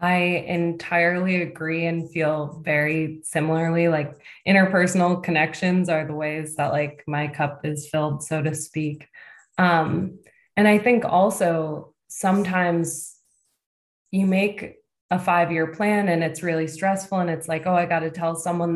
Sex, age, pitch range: female, 20-39, 160-185 Hz